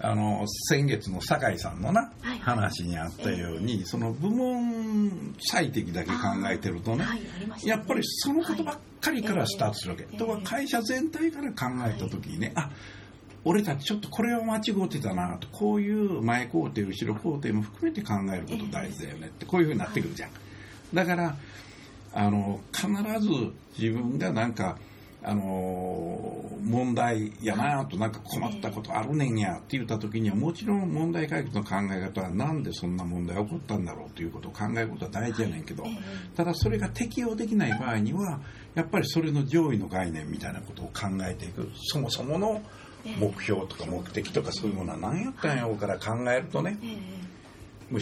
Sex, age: male, 60-79